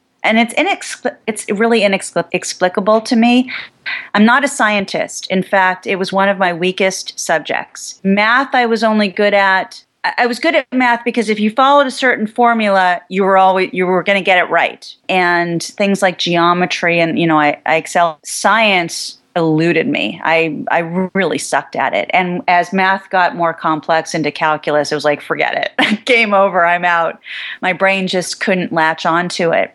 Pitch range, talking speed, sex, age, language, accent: 175-225 Hz, 195 wpm, female, 40-59, English, American